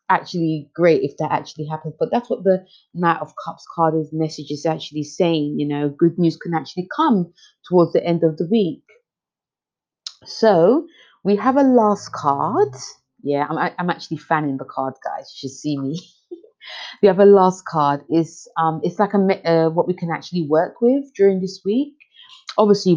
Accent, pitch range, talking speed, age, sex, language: British, 155-215 Hz, 190 wpm, 30-49, female, English